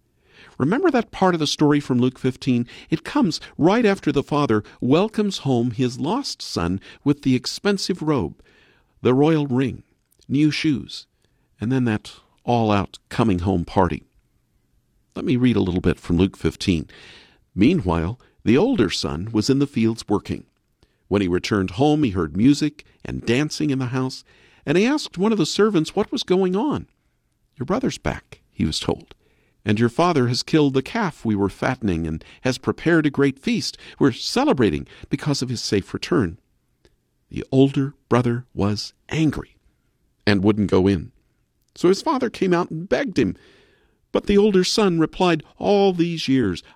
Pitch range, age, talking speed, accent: 105-155 Hz, 50-69, 165 wpm, American